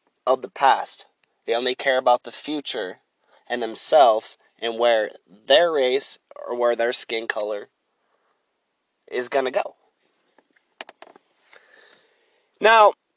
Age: 20-39